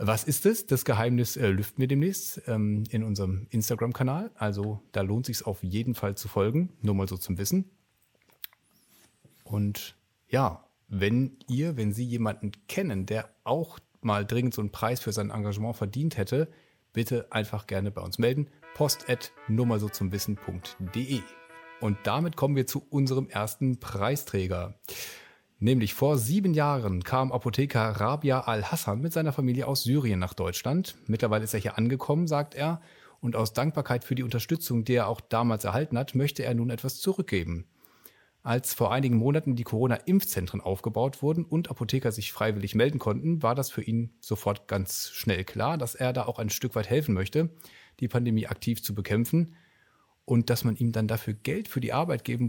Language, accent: German, German